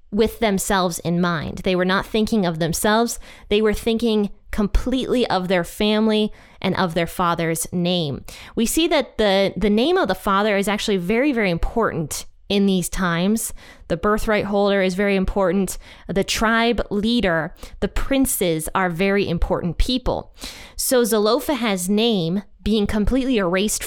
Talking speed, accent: 155 wpm, American